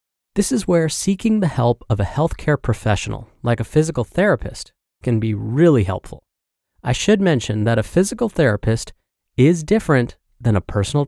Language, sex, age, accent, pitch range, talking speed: English, male, 30-49, American, 110-165 Hz, 160 wpm